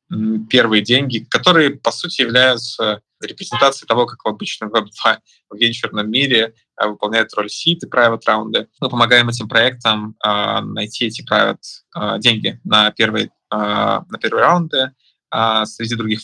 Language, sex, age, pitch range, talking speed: Russian, male, 20-39, 110-135 Hz, 125 wpm